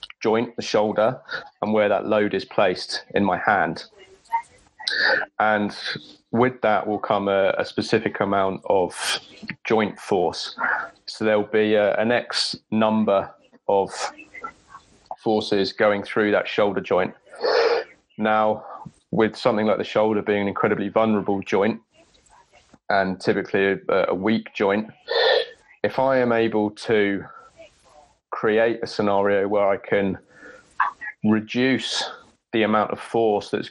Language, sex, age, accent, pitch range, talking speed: English, male, 20-39, British, 105-130 Hz, 125 wpm